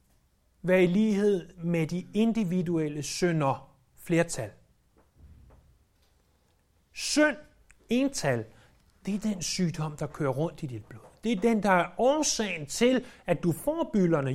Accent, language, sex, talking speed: native, Danish, male, 130 wpm